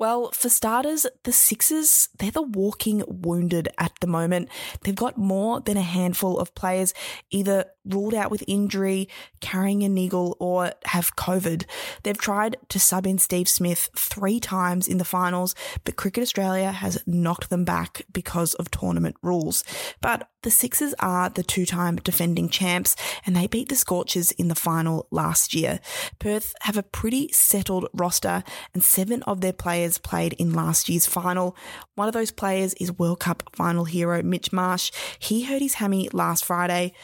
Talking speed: 170 wpm